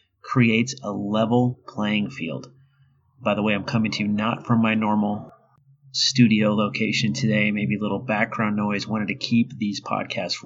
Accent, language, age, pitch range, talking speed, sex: American, English, 30-49, 110-135 Hz, 165 wpm, male